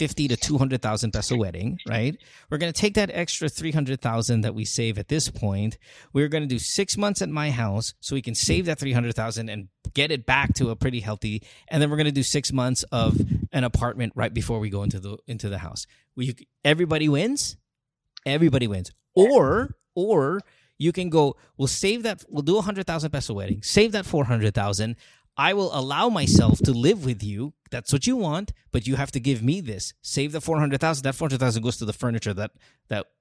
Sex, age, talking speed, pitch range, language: male, 30-49, 225 wpm, 115-150 Hz, English